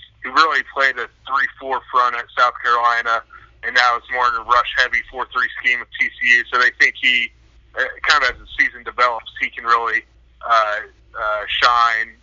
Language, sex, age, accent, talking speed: English, male, 30-49, American, 175 wpm